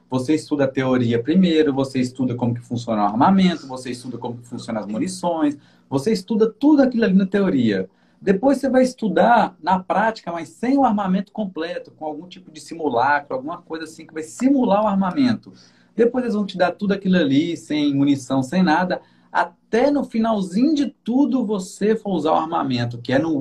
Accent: Brazilian